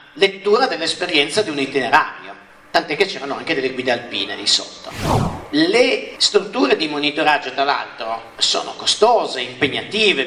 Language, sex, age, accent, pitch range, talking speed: Italian, male, 50-69, native, 140-185 Hz, 135 wpm